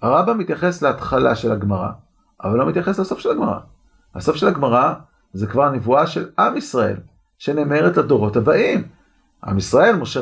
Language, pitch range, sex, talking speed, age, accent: Hebrew, 145-240 Hz, male, 155 wpm, 40-59, native